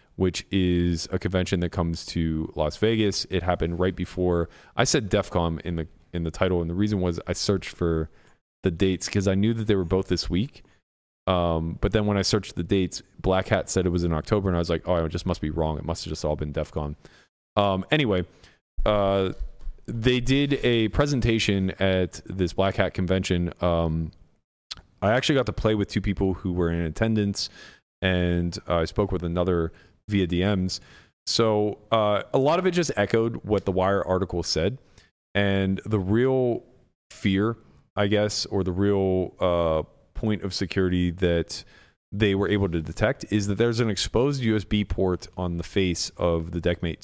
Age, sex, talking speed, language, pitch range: 30-49, male, 190 wpm, English, 85-105 Hz